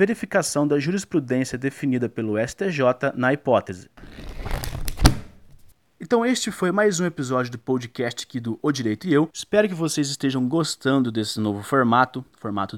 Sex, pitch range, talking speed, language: male, 125-165 Hz, 145 wpm, Portuguese